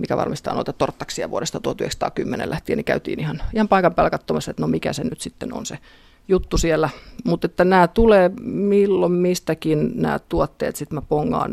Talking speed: 175 wpm